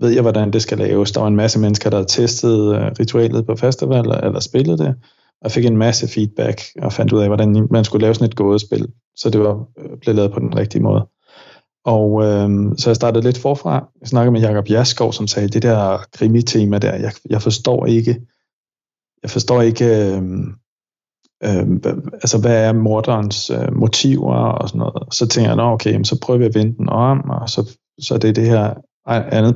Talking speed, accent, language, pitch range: 210 wpm, native, Danish, 105-125 Hz